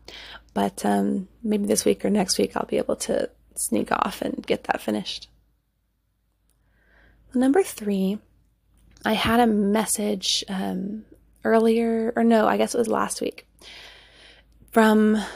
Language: English